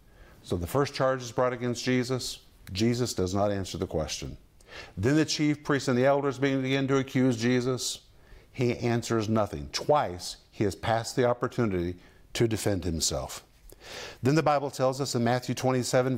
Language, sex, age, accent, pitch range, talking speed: English, male, 50-69, American, 105-140 Hz, 165 wpm